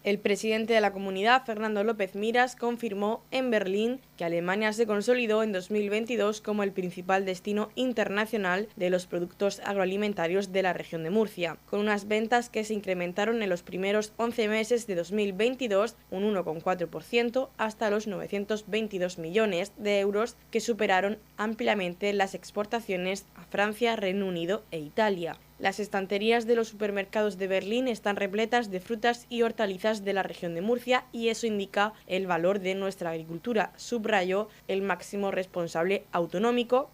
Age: 20-39